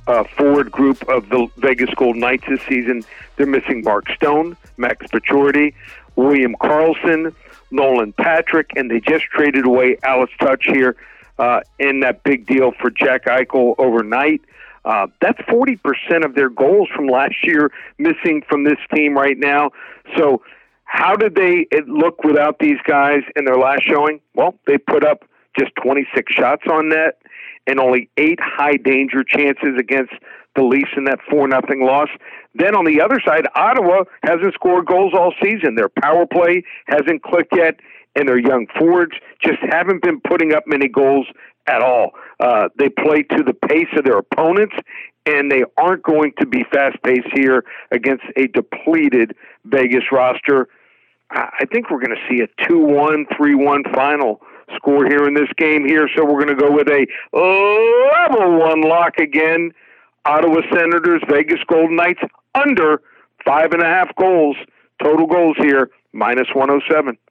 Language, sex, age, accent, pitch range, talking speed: English, male, 50-69, American, 135-170 Hz, 160 wpm